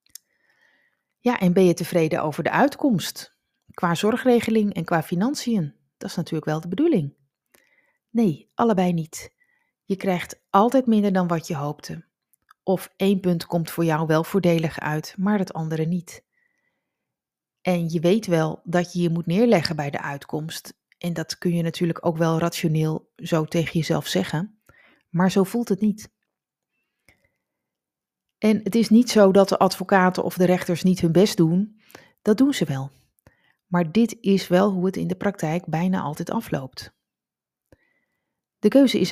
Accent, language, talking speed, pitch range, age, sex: Dutch, Dutch, 165 wpm, 170-210 Hz, 30-49, female